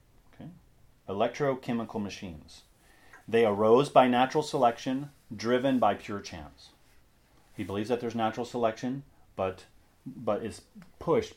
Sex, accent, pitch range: male, American, 100-125 Hz